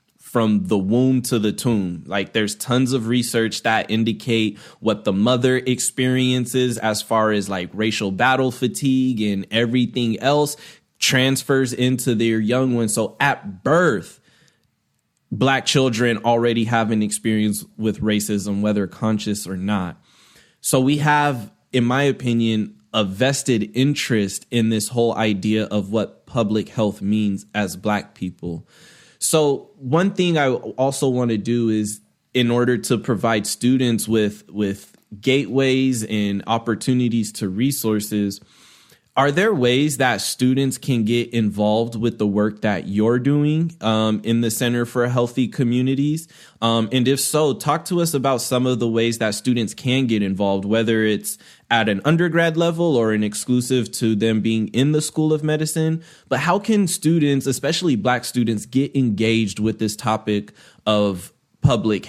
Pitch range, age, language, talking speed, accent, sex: 105-130 Hz, 20-39, English, 155 wpm, American, male